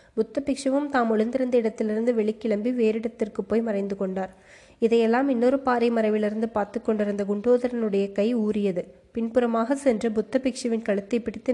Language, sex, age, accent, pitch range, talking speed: Tamil, female, 20-39, native, 210-245 Hz, 125 wpm